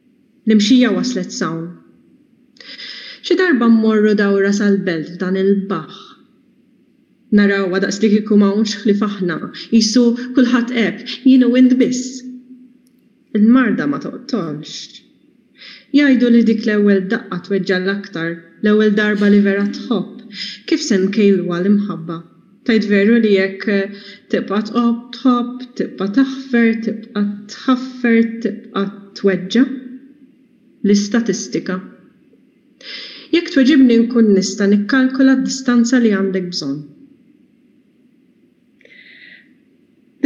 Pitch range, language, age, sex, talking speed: 200-255 Hz, German, 30-49, female, 80 wpm